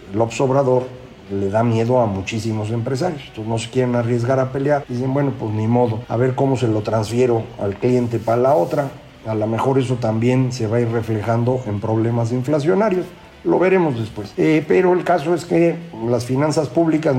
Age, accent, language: 50-69, Mexican, Spanish